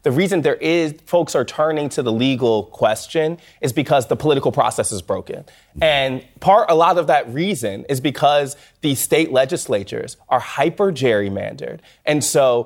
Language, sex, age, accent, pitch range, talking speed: English, male, 20-39, American, 130-175 Hz, 165 wpm